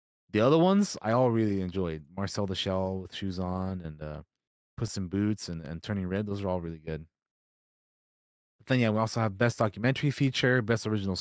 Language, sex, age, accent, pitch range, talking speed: English, male, 20-39, American, 90-120 Hz, 205 wpm